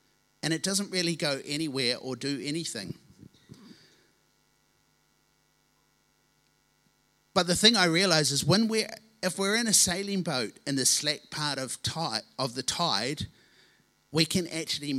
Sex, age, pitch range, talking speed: male, 50-69, 120-160 Hz, 140 wpm